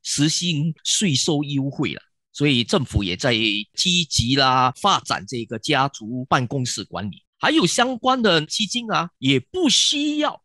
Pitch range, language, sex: 130-215 Hz, Chinese, male